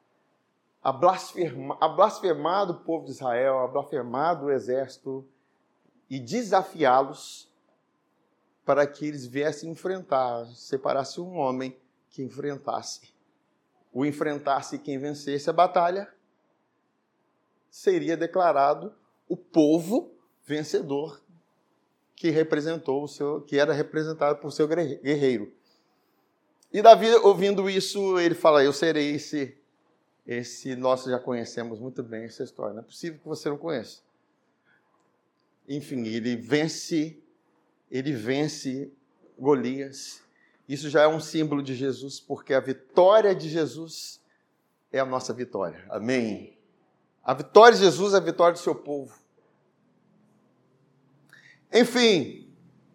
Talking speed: 115 wpm